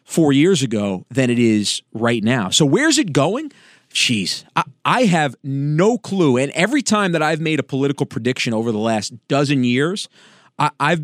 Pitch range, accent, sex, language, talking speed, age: 120-150 Hz, American, male, English, 185 wpm, 40-59